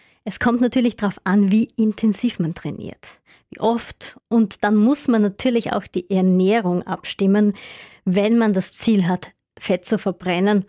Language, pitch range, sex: German, 195-240 Hz, female